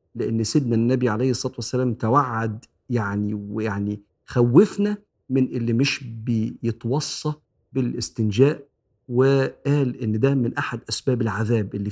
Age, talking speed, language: 50-69, 115 wpm, Arabic